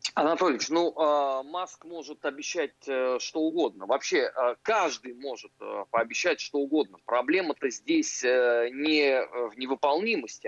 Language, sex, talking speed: Russian, male, 105 wpm